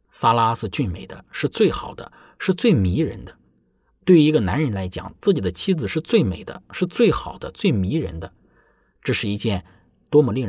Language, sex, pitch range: Chinese, male, 90-130 Hz